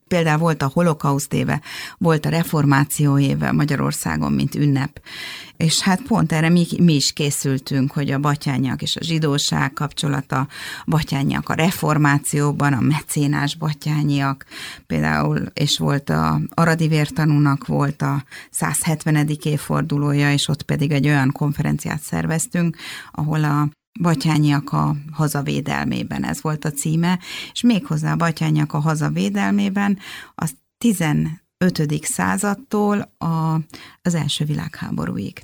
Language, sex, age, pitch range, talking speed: Hungarian, female, 30-49, 145-170 Hz, 120 wpm